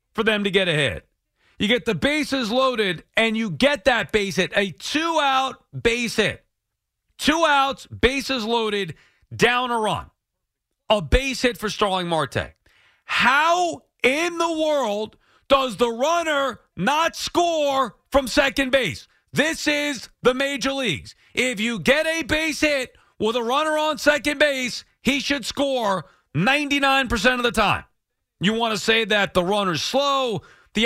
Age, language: 40-59, English